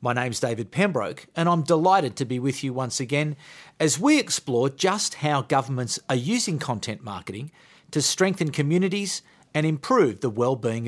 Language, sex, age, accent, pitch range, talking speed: English, male, 40-59, Australian, 135-180 Hz, 165 wpm